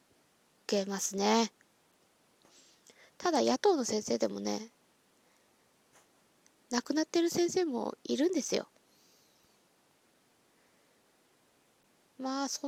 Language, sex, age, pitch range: Japanese, female, 20-39, 220-350 Hz